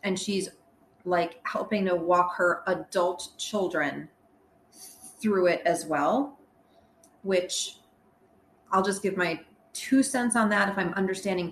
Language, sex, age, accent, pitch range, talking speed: English, female, 30-49, American, 170-205 Hz, 130 wpm